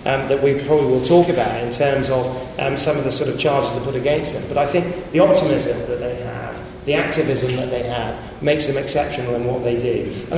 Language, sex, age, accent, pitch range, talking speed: English, male, 30-49, British, 125-150 Hz, 245 wpm